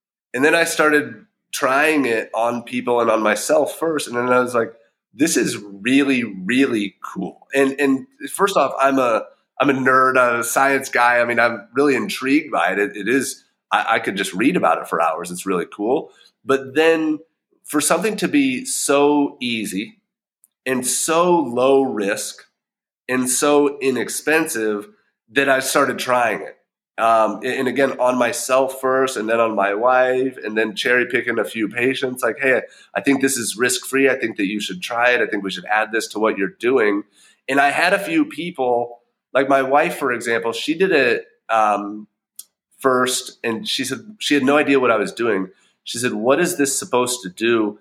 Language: English